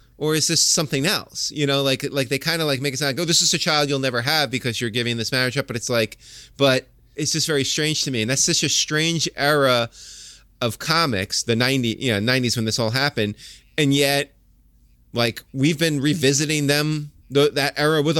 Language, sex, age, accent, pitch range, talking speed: English, male, 20-39, American, 115-150 Hz, 230 wpm